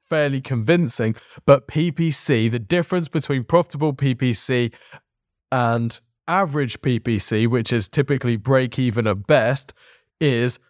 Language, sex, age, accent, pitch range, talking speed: English, male, 20-39, British, 115-140 Hz, 110 wpm